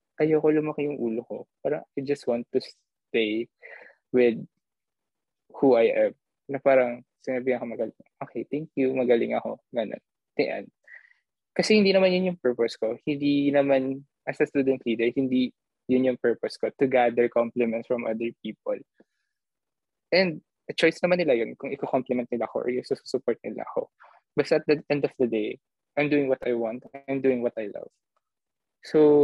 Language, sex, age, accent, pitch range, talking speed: English, male, 20-39, Filipino, 120-145 Hz, 175 wpm